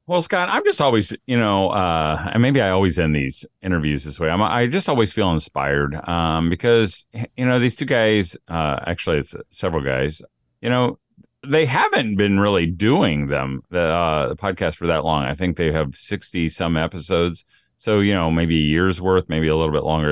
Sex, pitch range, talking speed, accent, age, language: male, 75-110 Hz, 205 wpm, American, 40-59, English